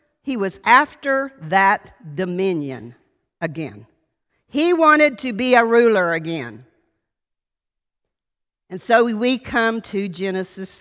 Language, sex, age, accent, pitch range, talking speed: English, female, 50-69, American, 190-265 Hz, 105 wpm